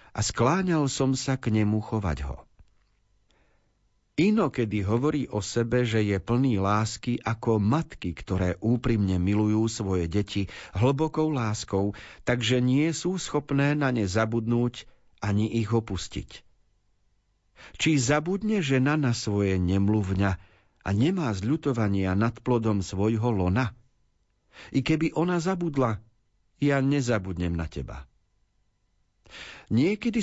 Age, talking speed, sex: 50-69, 115 wpm, male